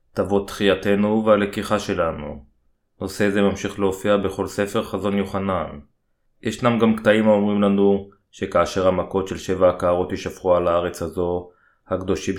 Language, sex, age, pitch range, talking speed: Hebrew, male, 20-39, 95-100 Hz, 130 wpm